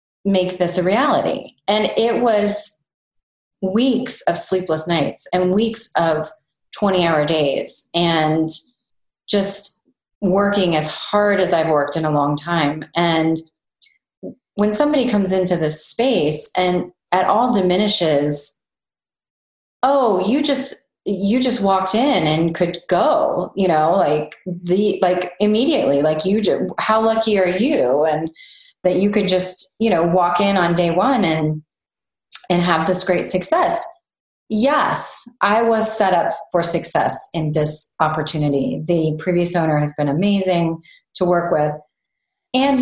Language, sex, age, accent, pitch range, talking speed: English, female, 30-49, American, 165-215 Hz, 145 wpm